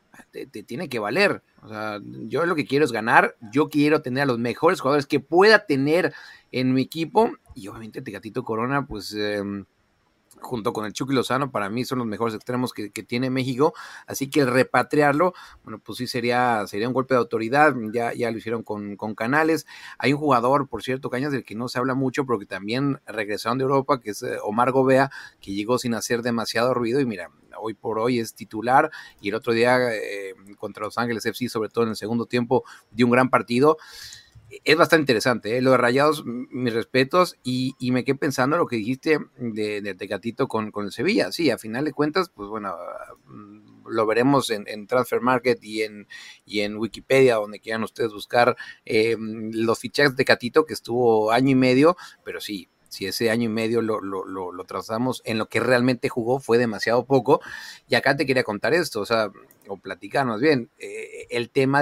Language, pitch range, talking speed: English, 110-135 Hz, 205 wpm